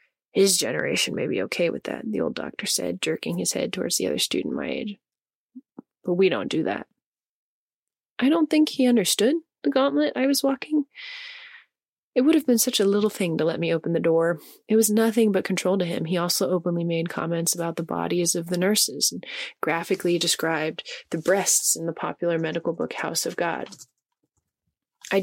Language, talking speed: English, 195 wpm